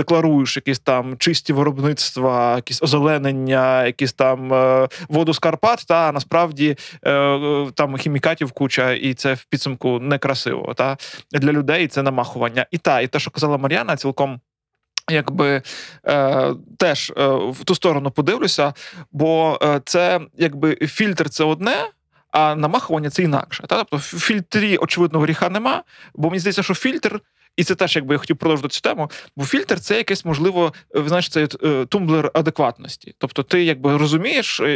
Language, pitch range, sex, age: Ukrainian, 140-175 Hz, male, 20-39